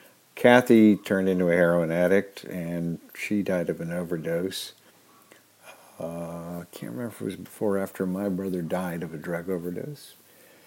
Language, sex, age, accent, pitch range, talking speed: English, male, 50-69, American, 95-125 Hz, 155 wpm